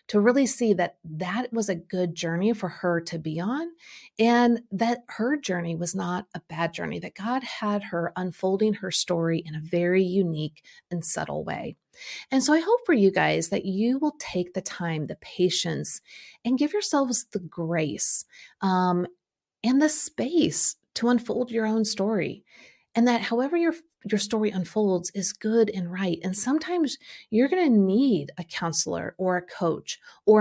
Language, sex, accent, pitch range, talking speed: English, female, American, 180-240 Hz, 175 wpm